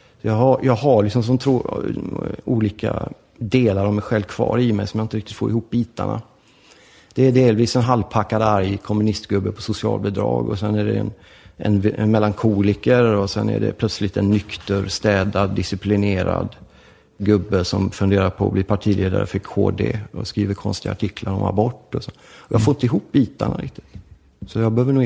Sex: male